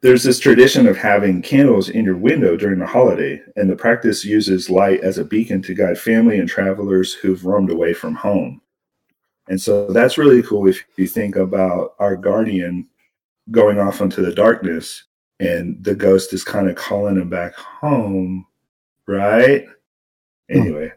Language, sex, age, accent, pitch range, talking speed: English, male, 40-59, American, 95-135 Hz, 165 wpm